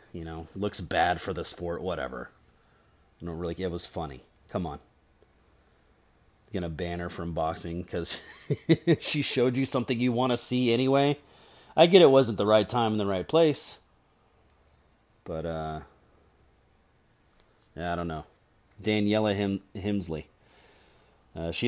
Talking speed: 145 wpm